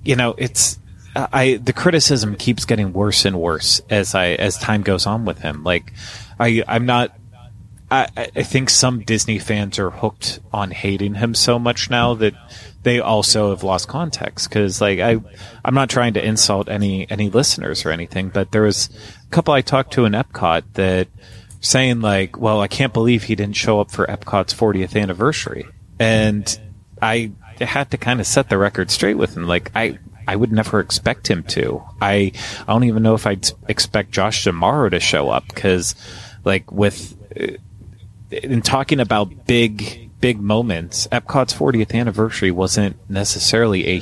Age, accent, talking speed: 30-49, American, 175 wpm